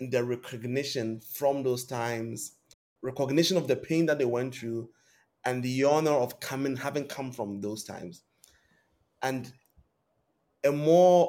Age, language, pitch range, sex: 20-39, English, 120-150 Hz, male